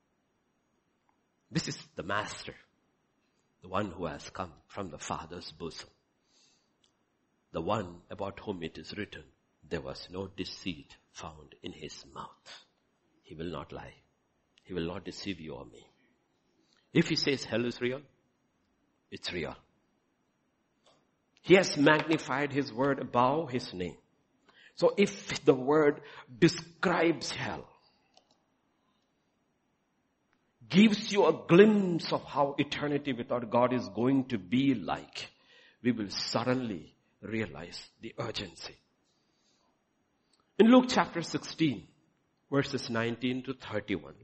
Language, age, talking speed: English, 60-79, 120 wpm